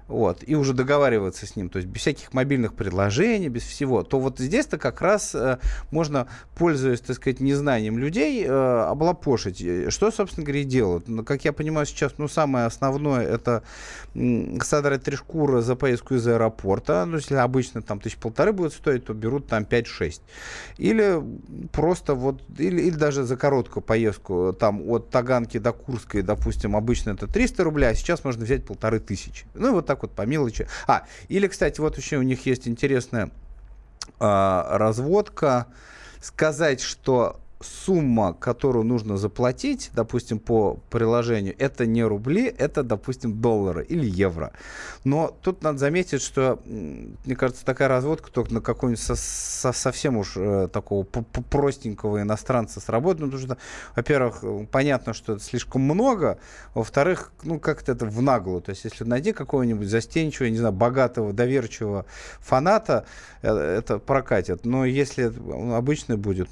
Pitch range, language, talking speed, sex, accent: 110-140 Hz, Russian, 155 wpm, male, native